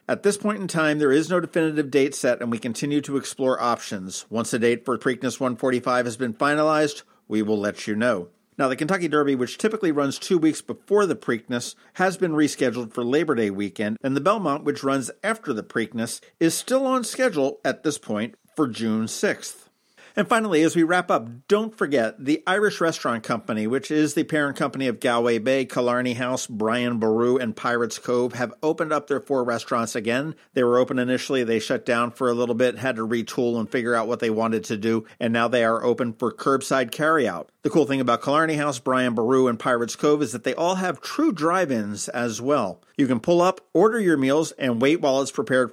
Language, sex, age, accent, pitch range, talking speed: English, male, 50-69, American, 120-155 Hz, 215 wpm